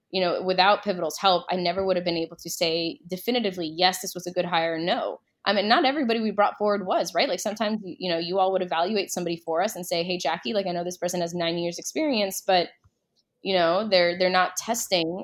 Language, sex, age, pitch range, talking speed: English, female, 20-39, 170-185 Hz, 240 wpm